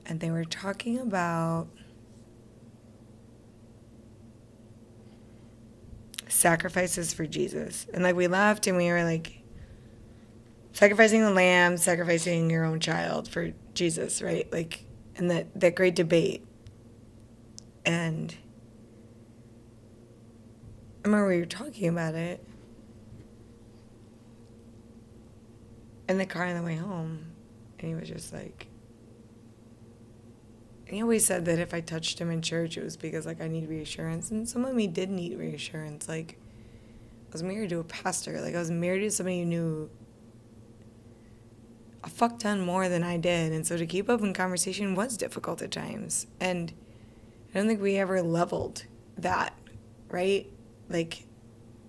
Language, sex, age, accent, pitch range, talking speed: English, female, 20-39, American, 115-180 Hz, 140 wpm